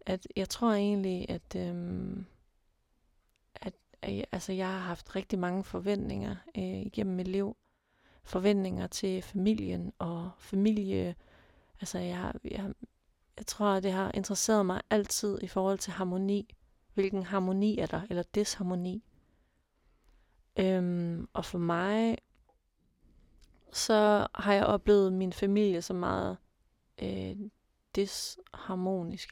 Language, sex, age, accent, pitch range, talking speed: Danish, female, 30-49, native, 180-205 Hz, 120 wpm